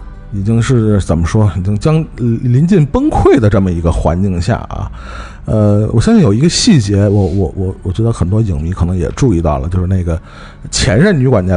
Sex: male